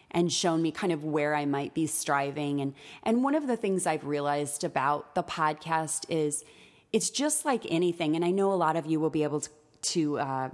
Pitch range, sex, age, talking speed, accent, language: 160-215 Hz, female, 30-49, 220 wpm, American, English